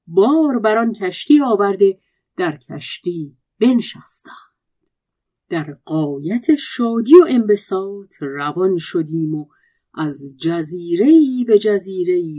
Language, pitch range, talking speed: Persian, 160-270 Hz, 90 wpm